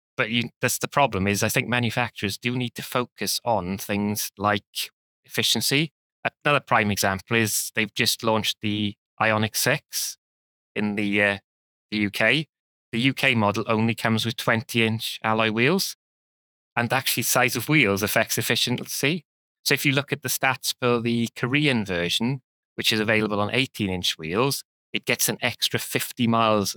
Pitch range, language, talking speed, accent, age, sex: 105-125 Hz, English, 155 wpm, British, 20-39, male